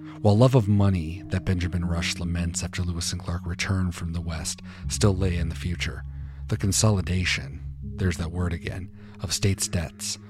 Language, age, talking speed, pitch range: English, 40-59, 175 wpm, 85-100 Hz